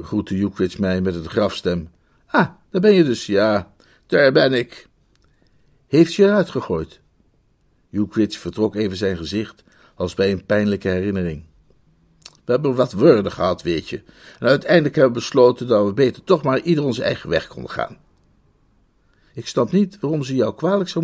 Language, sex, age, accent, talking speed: Dutch, male, 60-79, Dutch, 170 wpm